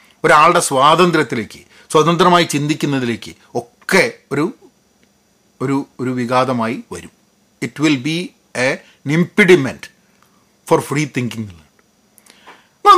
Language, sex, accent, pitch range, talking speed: Malayalam, male, native, 125-175 Hz, 85 wpm